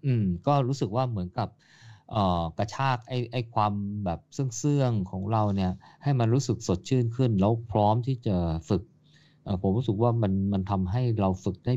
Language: Thai